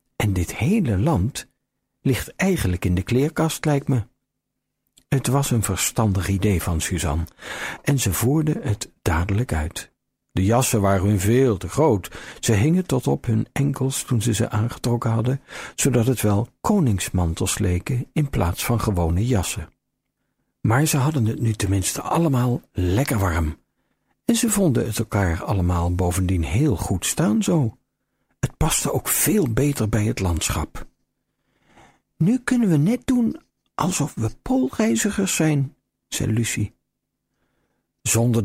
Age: 60-79